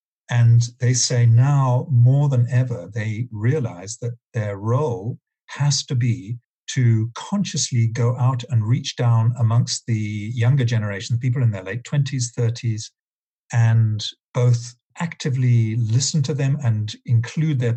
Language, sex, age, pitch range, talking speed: English, male, 50-69, 115-130 Hz, 140 wpm